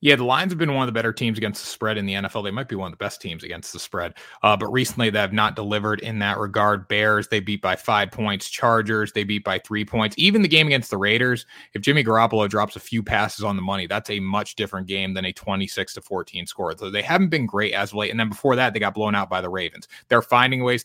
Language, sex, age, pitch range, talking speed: English, male, 30-49, 100-115 Hz, 280 wpm